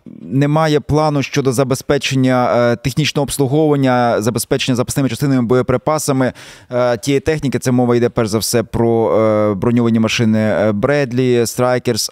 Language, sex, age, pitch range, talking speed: Ukrainian, male, 20-39, 115-135 Hz, 115 wpm